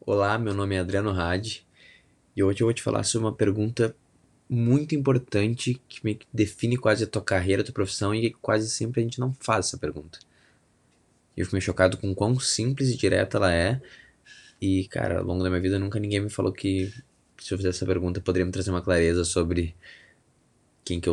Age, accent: 20-39, Brazilian